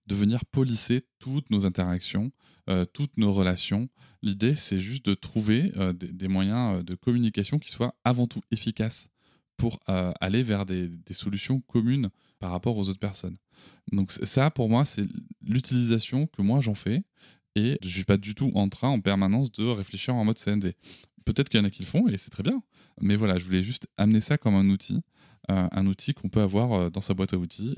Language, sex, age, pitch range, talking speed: French, male, 20-39, 95-120 Hz, 210 wpm